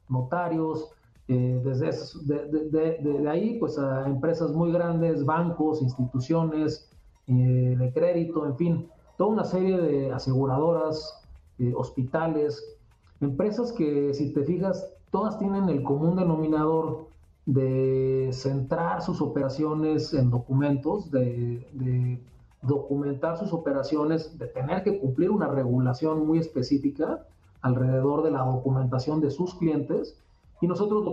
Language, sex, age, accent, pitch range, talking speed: Spanish, male, 40-59, Mexican, 130-160 Hz, 120 wpm